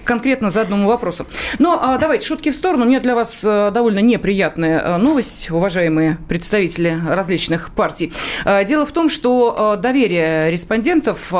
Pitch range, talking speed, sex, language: 185-250 Hz, 140 wpm, female, Russian